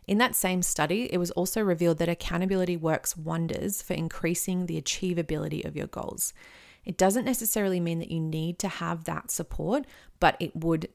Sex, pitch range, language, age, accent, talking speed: female, 160-190 Hz, English, 30-49, Australian, 180 wpm